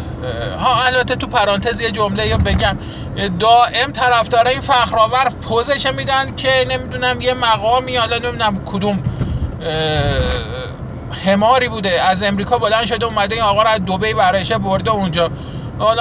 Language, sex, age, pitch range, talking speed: Persian, male, 20-39, 170-225 Hz, 130 wpm